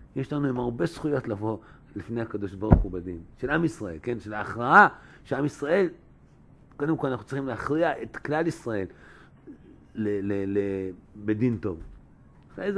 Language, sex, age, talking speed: Hebrew, male, 50-69, 150 wpm